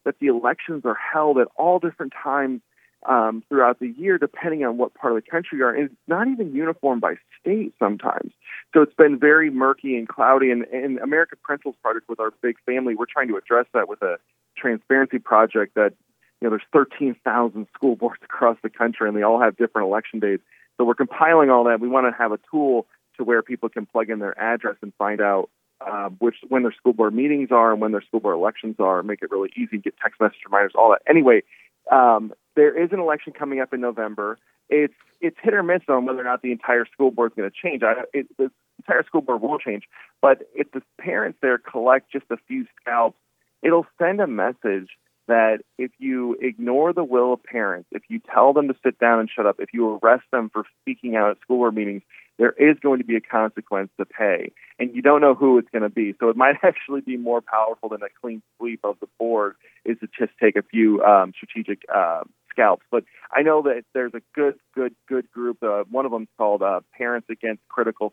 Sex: male